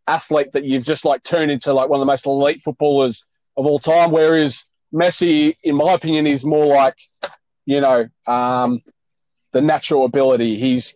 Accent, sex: Australian, male